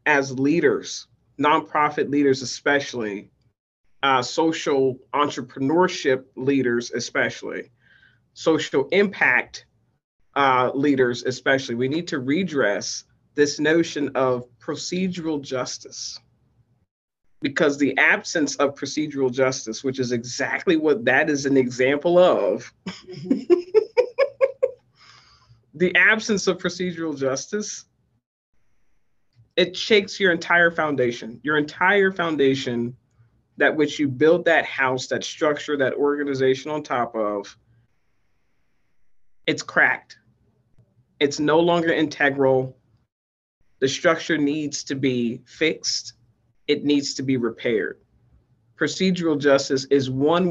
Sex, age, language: male, 50-69, English